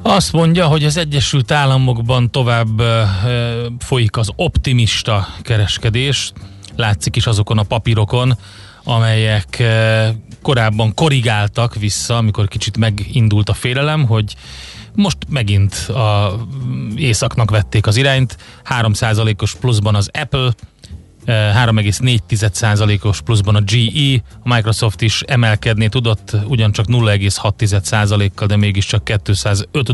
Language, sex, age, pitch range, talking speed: Hungarian, male, 30-49, 105-120 Hz, 105 wpm